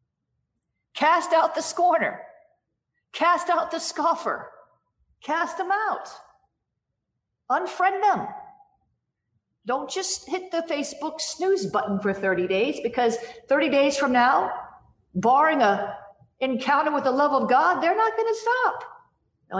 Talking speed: 130 wpm